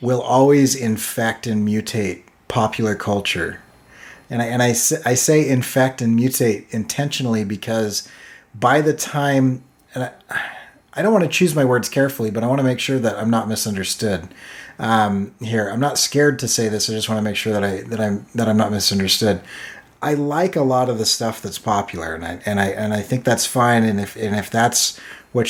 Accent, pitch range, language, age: American, 110-130 Hz, English, 30-49